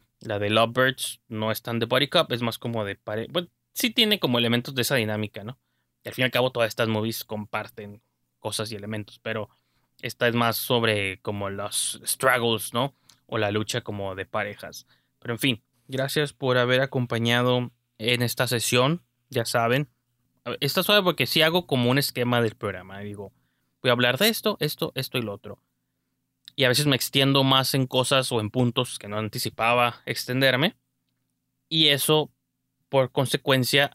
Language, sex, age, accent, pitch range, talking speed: Spanish, male, 20-39, Mexican, 110-140 Hz, 180 wpm